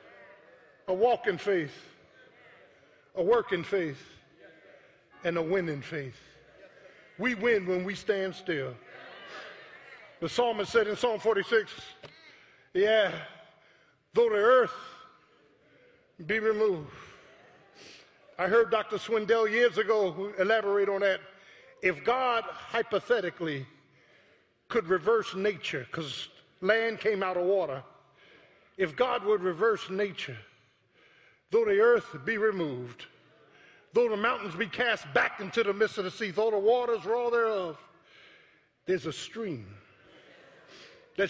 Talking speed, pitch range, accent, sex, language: 115 wpm, 175-230 Hz, American, male, English